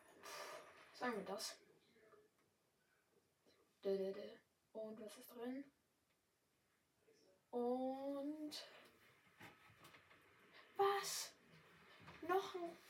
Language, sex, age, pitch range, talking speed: German, female, 10-29, 205-280 Hz, 50 wpm